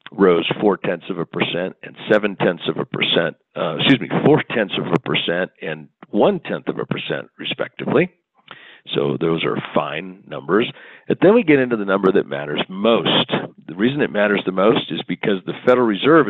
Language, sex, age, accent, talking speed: English, male, 50-69, American, 180 wpm